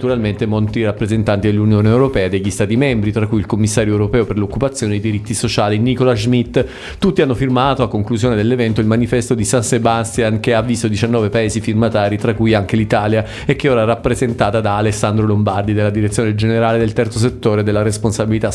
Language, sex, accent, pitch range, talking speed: Italian, male, native, 105-125 Hz, 190 wpm